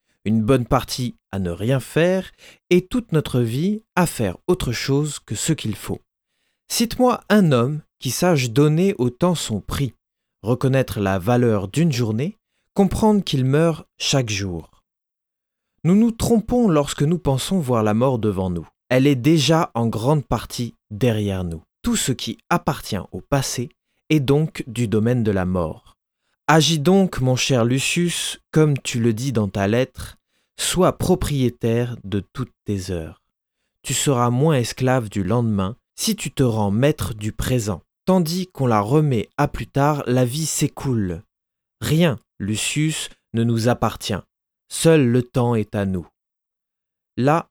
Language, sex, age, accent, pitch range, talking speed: French, male, 30-49, French, 110-155 Hz, 155 wpm